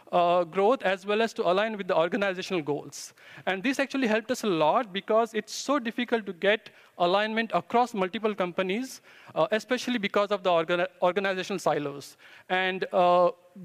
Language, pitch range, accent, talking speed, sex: English, 180-220 Hz, Indian, 165 wpm, male